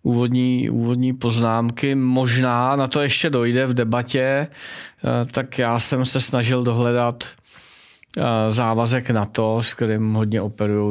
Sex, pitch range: male, 105-115 Hz